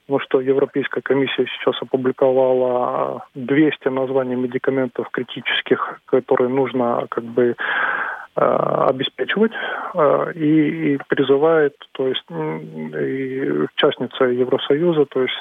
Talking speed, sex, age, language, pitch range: 75 wpm, male, 20-39, Russian, 130-145 Hz